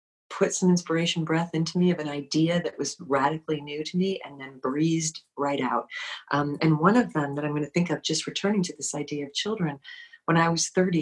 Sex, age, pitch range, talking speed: female, 40-59, 140-175 Hz, 230 wpm